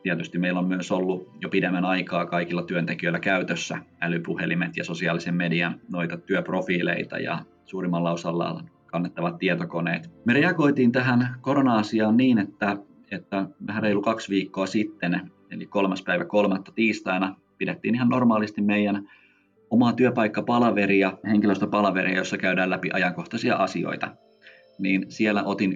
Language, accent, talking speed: Finnish, native, 125 wpm